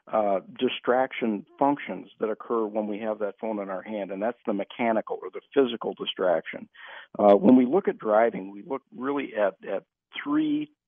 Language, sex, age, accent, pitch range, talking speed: English, male, 50-69, American, 105-130 Hz, 180 wpm